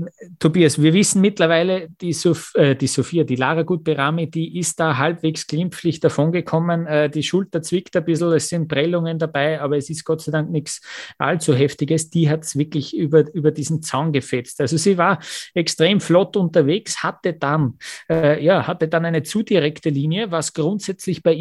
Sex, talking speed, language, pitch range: male, 170 wpm, German, 150-175 Hz